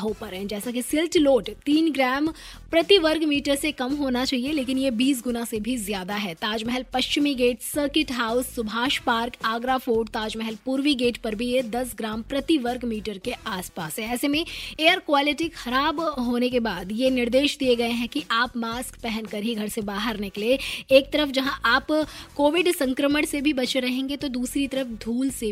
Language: Hindi